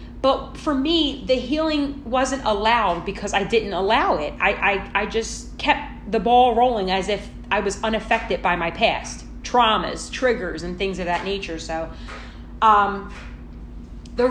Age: 30-49